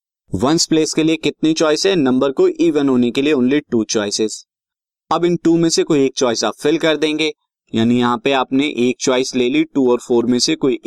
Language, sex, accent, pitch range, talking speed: Hindi, male, native, 125-155 Hz, 230 wpm